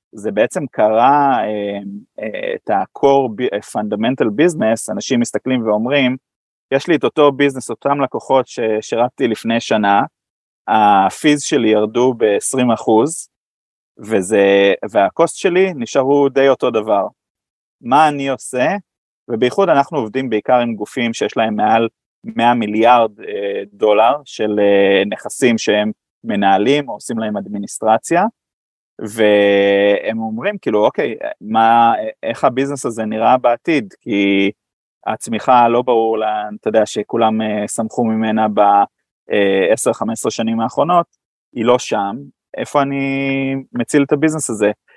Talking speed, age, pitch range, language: 120 wpm, 30-49, 105-135 Hz, Hebrew